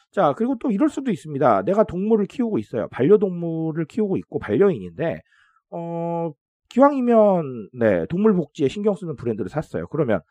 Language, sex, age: Korean, male, 40-59